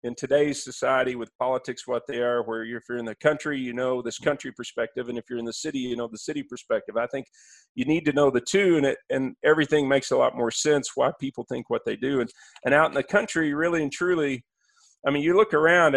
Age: 40-59